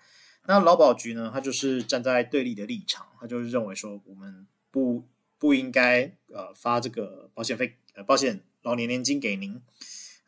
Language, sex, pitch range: Chinese, male, 115-160 Hz